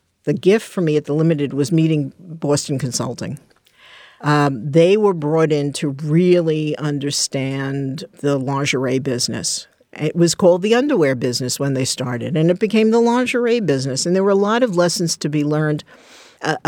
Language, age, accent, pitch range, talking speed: English, 50-69, American, 140-175 Hz, 175 wpm